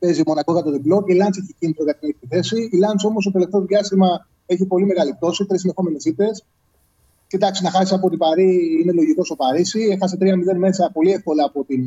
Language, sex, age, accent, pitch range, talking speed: Greek, male, 30-49, native, 150-195 Hz, 205 wpm